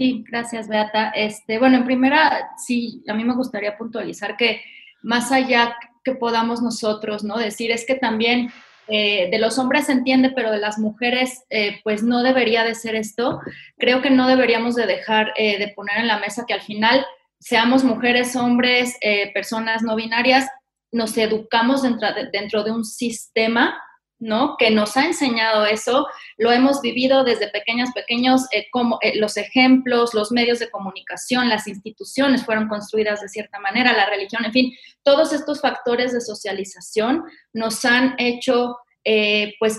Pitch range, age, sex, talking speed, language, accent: 215-255 Hz, 20-39, female, 170 wpm, Spanish, Mexican